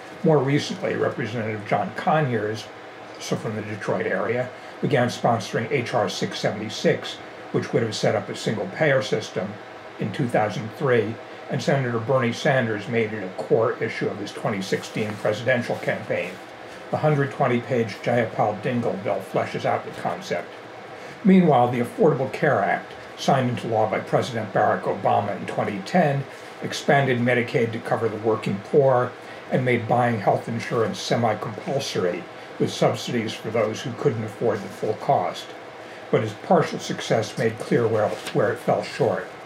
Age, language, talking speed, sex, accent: 60-79, English, 145 wpm, male, American